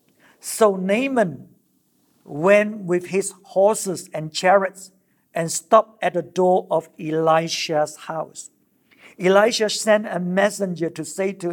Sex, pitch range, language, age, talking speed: male, 175-210 Hz, English, 50-69, 120 wpm